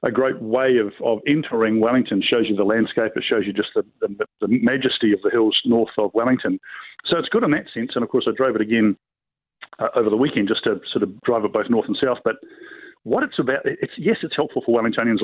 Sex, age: male, 50-69